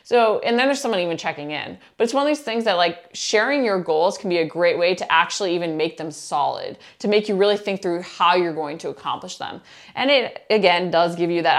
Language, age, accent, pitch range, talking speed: English, 20-39, American, 170-230 Hz, 255 wpm